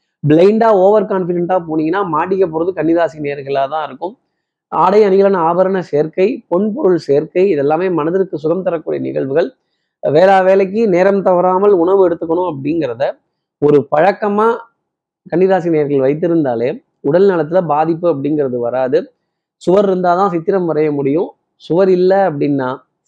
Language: Tamil